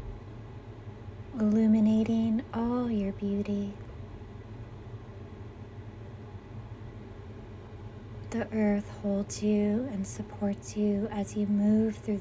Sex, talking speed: female, 75 wpm